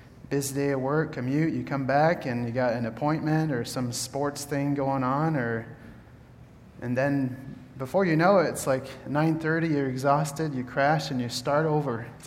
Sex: male